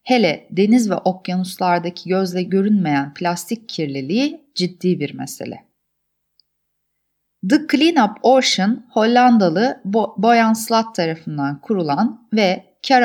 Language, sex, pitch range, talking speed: Turkish, female, 175-240 Hz, 100 wpm